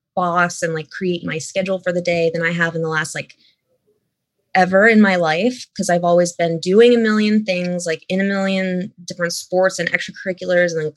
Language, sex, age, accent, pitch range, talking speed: English, female, 20-39, American, 165-190 Hz, 210 wpm